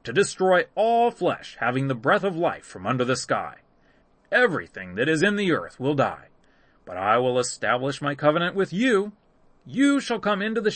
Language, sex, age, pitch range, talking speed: English, male, 30-49, 140-220 Hz, 190 wpm